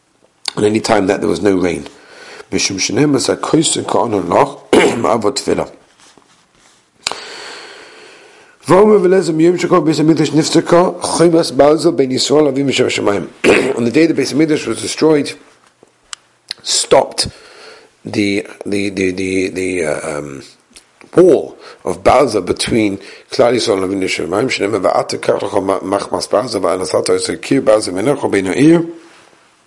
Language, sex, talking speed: English, male, 60 wpm